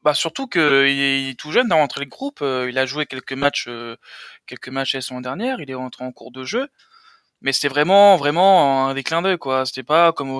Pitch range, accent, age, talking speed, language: 135-185 Hz, French, 20-39, 250 wpm, French